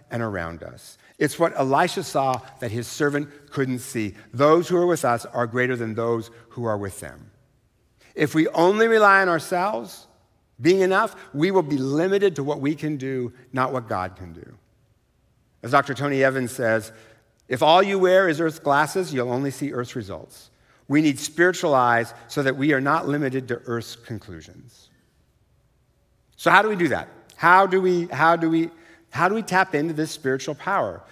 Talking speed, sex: 185 wpm, male